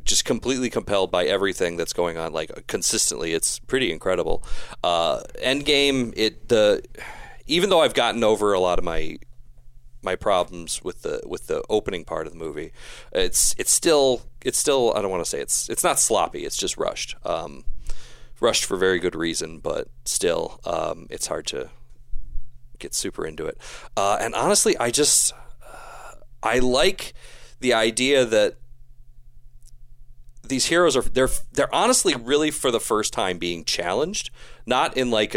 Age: 30-49